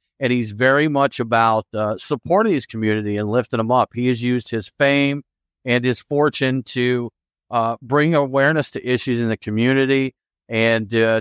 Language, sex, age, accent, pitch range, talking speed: English, male, 40-59, American, 110-140 Hz, 170 wpm